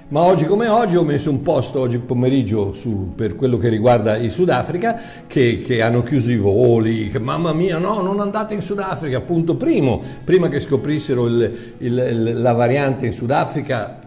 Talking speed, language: 160 wpm, Italian